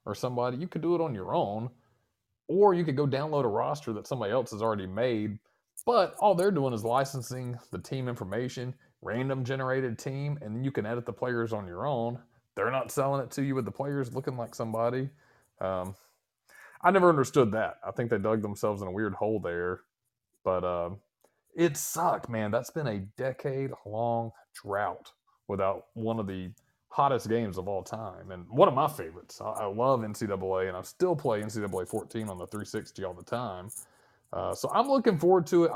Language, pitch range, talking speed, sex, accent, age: English, 95-135 Hz, 195 wpm, male, American, 30-49